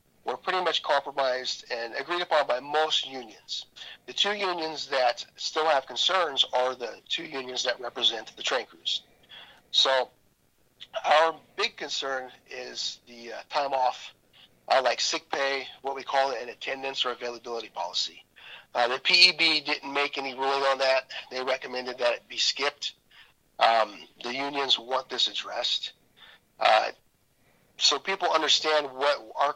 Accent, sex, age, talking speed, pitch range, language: American, male, 40-59, 150 wpm, 120-145 Hz, English